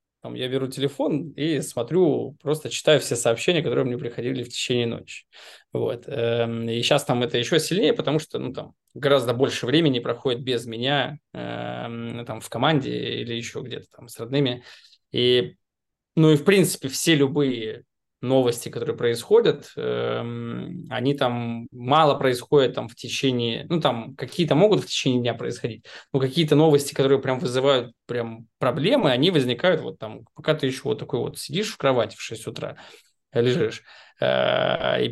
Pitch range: 120-155 Hz